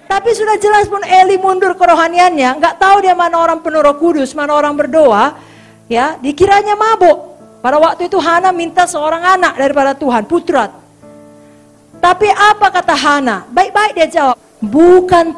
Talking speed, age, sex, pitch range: 150 wpm, 40-59, female, 280-365 Hz